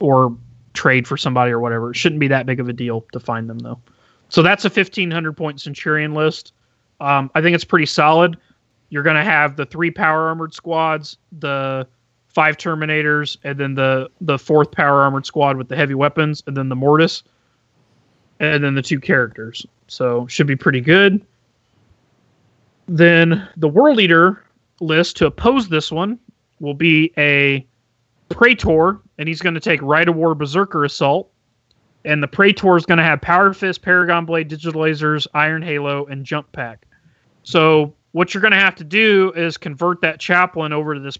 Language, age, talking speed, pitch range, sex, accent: English, 30-49, 180 wpm, 130-165 Hz, male, American